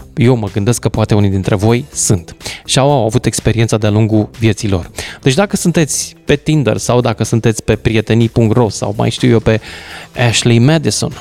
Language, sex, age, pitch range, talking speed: Romanian, male, 20-39, 105-135 Hz, 185 wpm